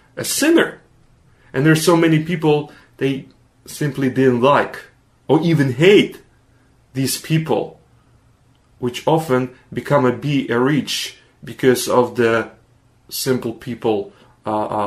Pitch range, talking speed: 125-165 Hz, 115 wpm